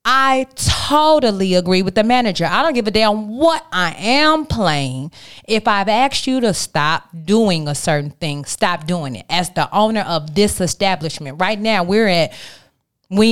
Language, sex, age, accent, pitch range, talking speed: English, female, 30-49, American, 175-245 Hz, 175 wpm